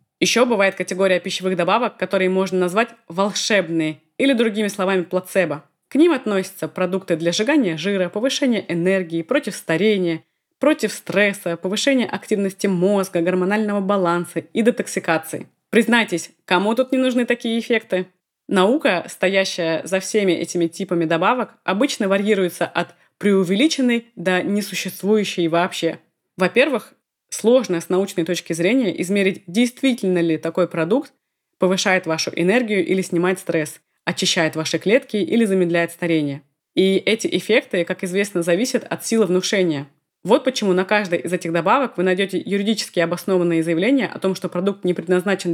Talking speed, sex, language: 135 wpm, female, Russian